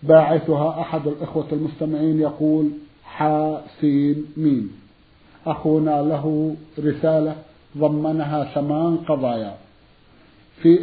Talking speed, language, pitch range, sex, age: 80 wpm, Arabic, 145-165 Hz, male, 50-69